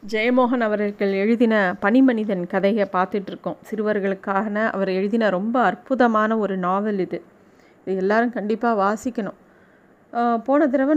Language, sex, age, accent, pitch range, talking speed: Tamil, female, 30-49, native, 205-245 Hz, 115 wpm